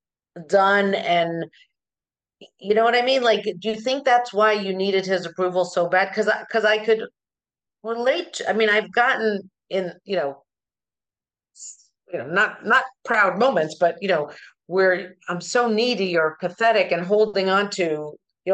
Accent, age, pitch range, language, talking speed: American, 50-69, 175-220 Hz, English, 170 wpm